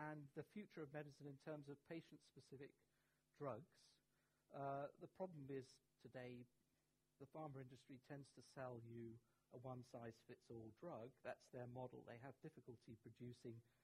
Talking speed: 140 wpm